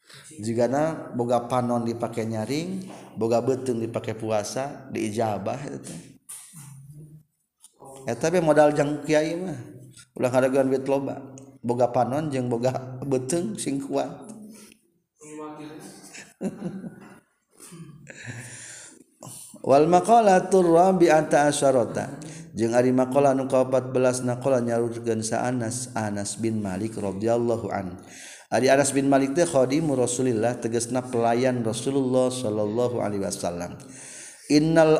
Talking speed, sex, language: 100 wpm, male, Indonesian